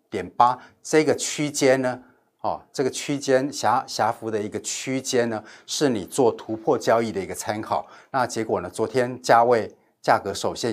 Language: Chinese